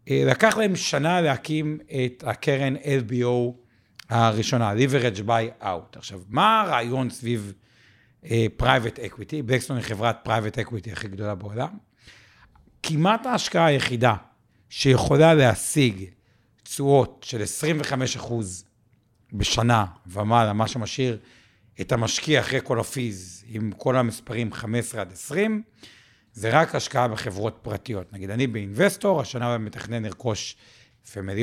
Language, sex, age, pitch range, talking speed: Hebrew, male, 60-79, 110-140 Hz, 120 wpm